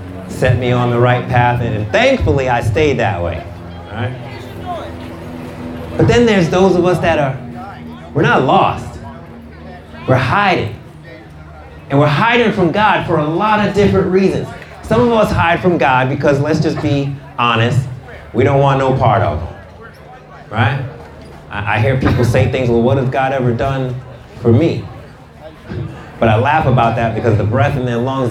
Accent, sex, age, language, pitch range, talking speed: American, male, 30-49, English, 110-140 Hz, 170 wpm